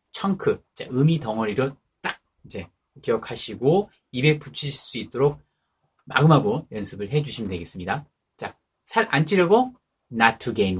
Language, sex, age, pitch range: Korean, male, 30-49, 115-165 Hz